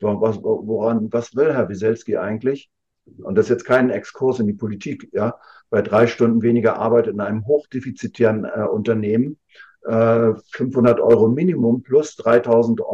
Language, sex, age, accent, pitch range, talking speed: German, male, 50-69, German, 105-120 Hz, 155 wpm